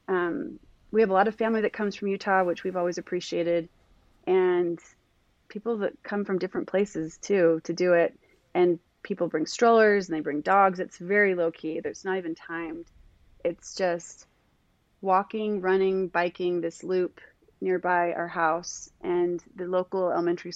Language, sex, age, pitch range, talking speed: English, female, 30-49, 165-195 Hz, 160 wpm